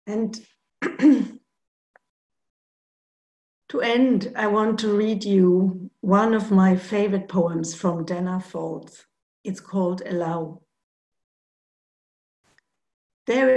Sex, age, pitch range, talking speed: female, 50-69, 180-230 Hz, 90 wpm